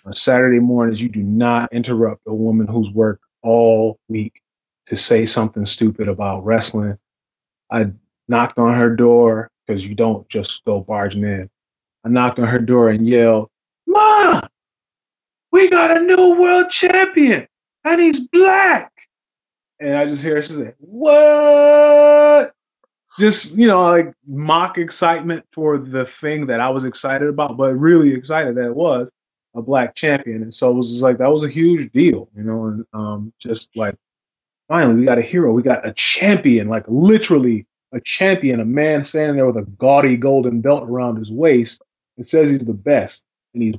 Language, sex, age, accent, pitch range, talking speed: English, male, 20-39, American, 115-155 Hz, 175 wpm